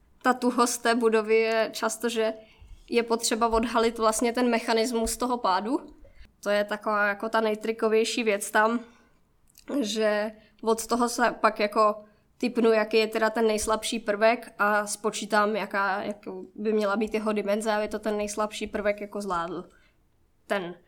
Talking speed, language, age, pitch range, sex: 150 wpm, Czech, 20-39, 205-235 Hz, female